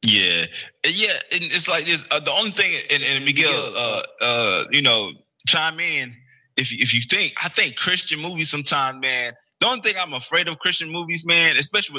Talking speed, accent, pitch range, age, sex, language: 200 wpm, American, 115-160 Hz, 20-39, male, Spanish